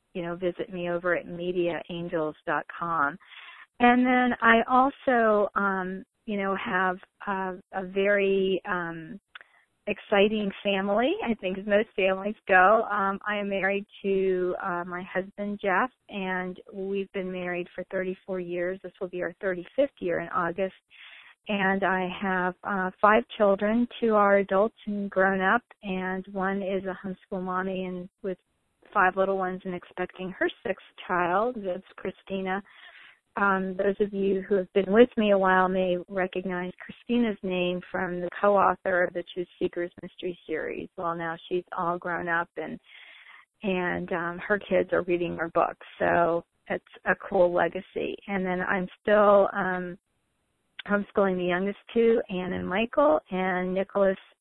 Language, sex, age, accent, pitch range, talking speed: English, female, 40-59, American, 180-200 Hz, 155 wpm